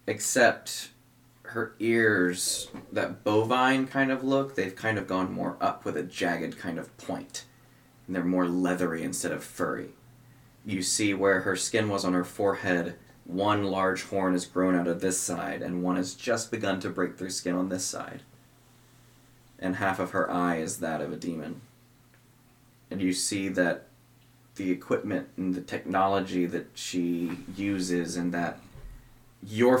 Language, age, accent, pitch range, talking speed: English, 20-39, American, 90-120 Hz, 165 wpm